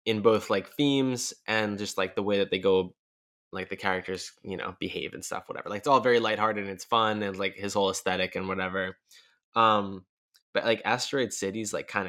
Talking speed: 220 wpm